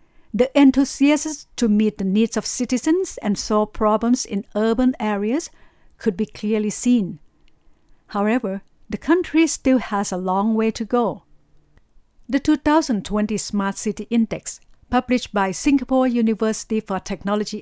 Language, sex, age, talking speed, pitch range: English, female, 60-79, 135 wpm, 195-240 Hz